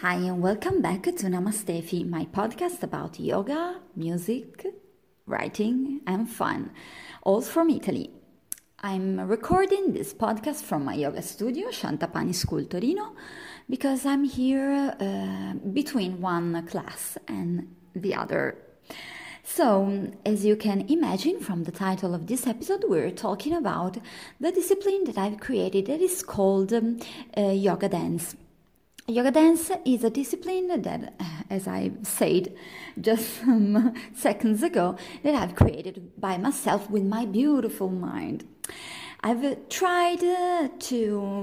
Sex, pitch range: female, 190-295 Hz